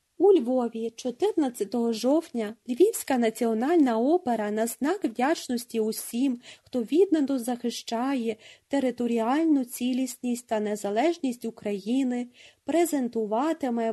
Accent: native